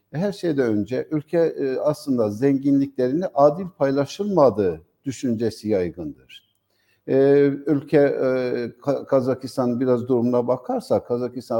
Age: 60-79